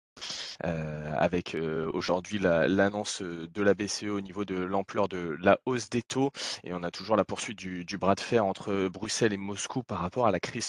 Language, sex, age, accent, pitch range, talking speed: French, male, 20-39, French, 95-110 Hz, 220 wpm